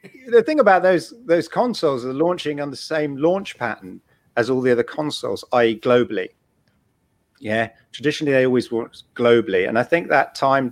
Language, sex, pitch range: English, male, 125-200 Hz